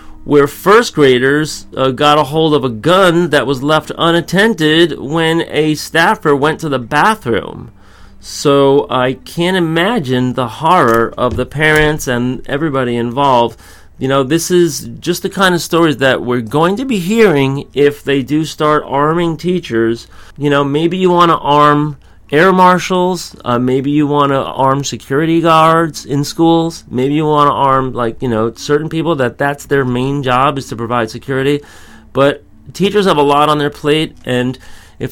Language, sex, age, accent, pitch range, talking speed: English, male, 40-59, American, 125-155 Hz, 175 wpm